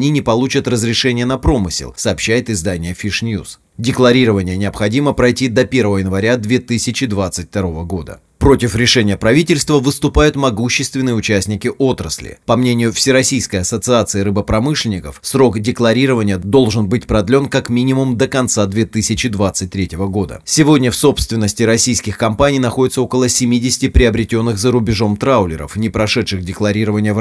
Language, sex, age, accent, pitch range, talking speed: Russian, male, 30-49, native, 105-130 Hz, 125 wpm